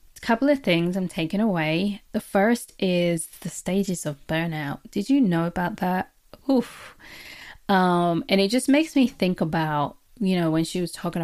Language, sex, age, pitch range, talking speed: English, female, 20-39, 165-190 Hz, 175 wpm